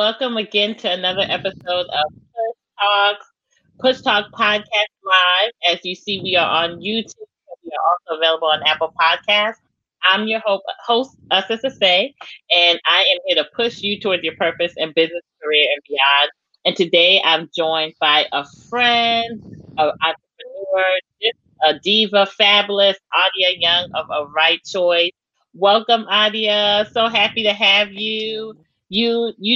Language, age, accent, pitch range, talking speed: English, 30-49, American, 155-210 Hz, 155 wpm